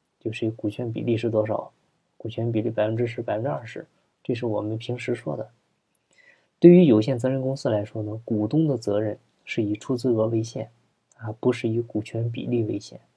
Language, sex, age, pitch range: Chinese, male, 20-39, 110-135 Hz